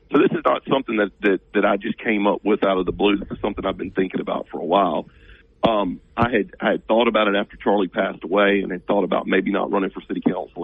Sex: male